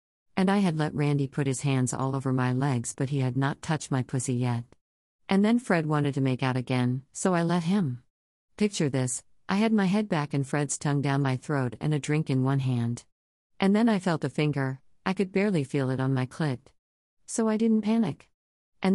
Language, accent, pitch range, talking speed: English, American, 130-180 Hz, 220 wpm